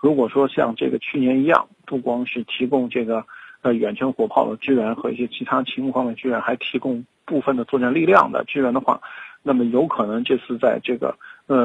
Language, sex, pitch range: Chinese, male, 120-135 Hz